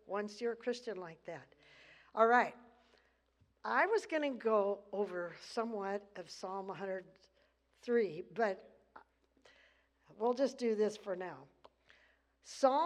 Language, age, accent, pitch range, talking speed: English, 60-79, American, 205-270 Hz, 120 wpm